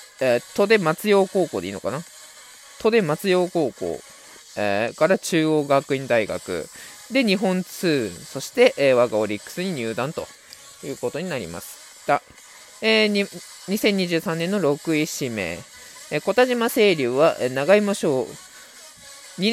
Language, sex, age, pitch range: Japanese, male, 20-39, 135-200 Hz